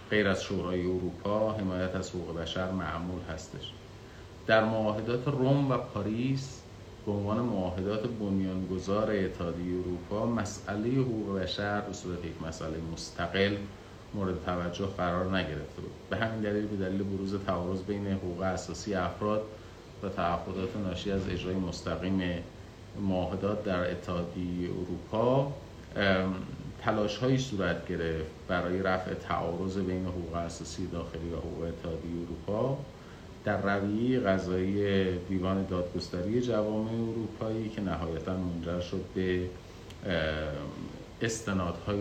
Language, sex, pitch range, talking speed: Persian, male, 85-105 Hz, 115 wpm